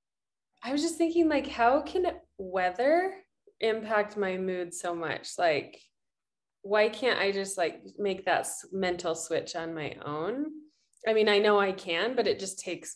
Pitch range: 175-220 Hz